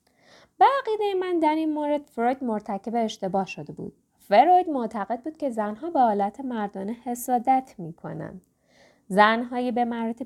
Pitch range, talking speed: 205-270 Hz, 135 wpm